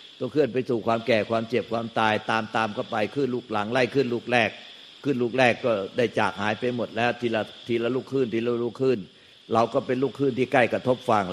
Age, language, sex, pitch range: 60-79, Thai, male, 115-130 Hz